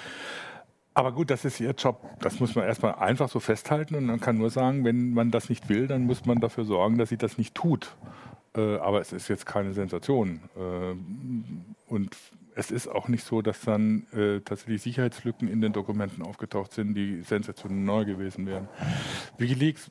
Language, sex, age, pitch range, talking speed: German, male, 50-69, 105-125 Hz, 185 wpm